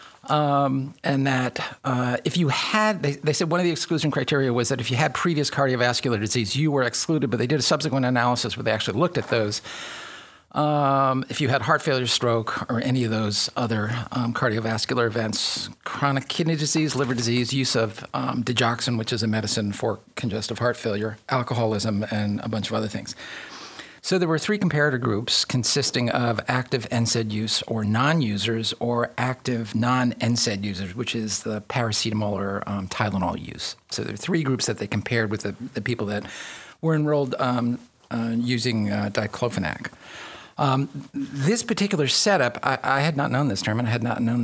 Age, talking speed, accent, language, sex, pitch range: 40-59, 190 wpm, American, English, male, 110-135 Hz